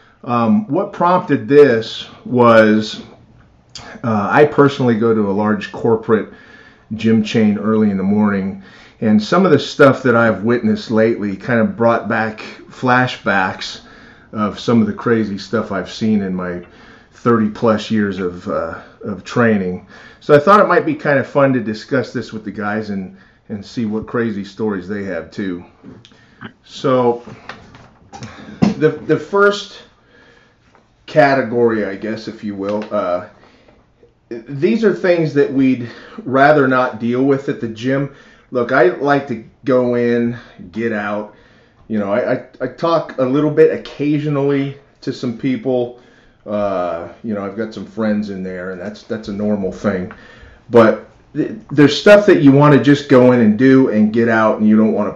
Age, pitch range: 30-49, 105-135 Hz